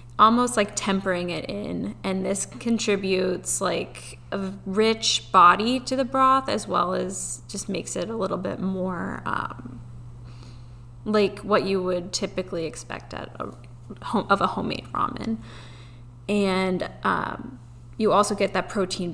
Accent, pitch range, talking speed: American, 125-210 Hz, 145 wpm